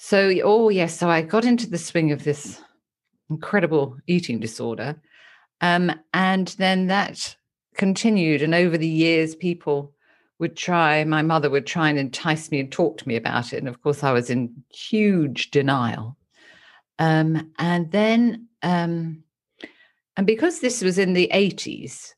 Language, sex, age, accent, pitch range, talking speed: English, female, 50-69, British, 145-190 Hz, 155 wpm